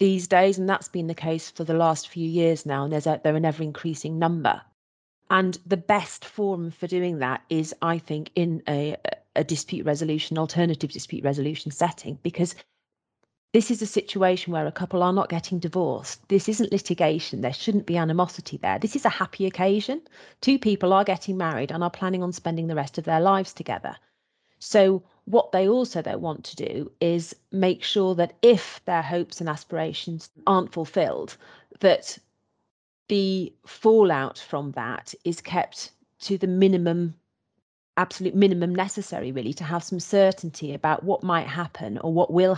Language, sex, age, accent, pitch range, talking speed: English, female, 40-59, British, 160-190 Hz, 170 wpm